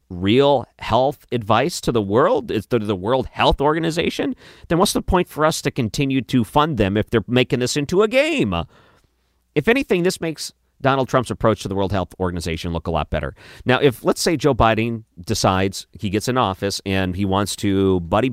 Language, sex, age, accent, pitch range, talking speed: English, male, 40-59, American, 90-125 Hz, 200 wpm